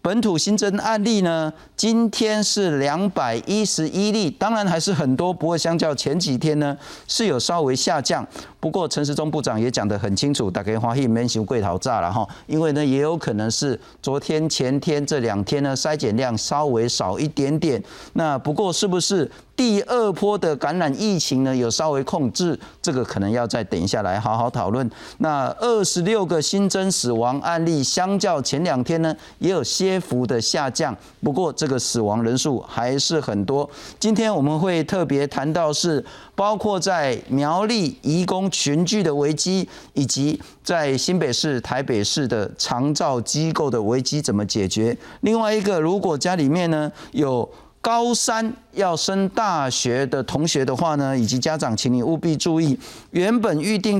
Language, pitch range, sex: Chinese, 135-195 Hz, male